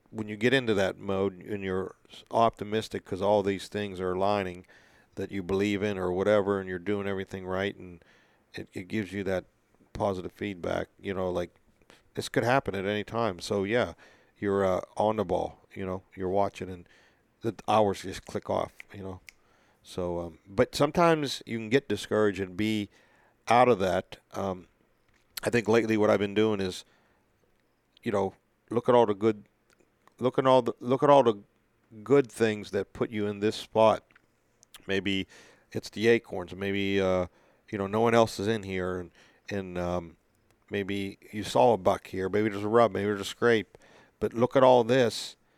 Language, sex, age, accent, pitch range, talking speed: English, male, 40-59, American, 95-110 Hz, 190 wpm